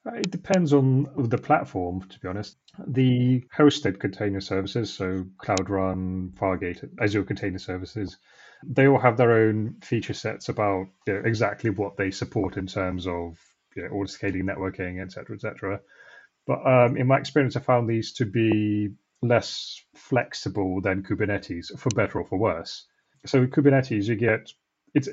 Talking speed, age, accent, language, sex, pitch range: 165 wpm, 30-49, British, English, male, 100-130 Hz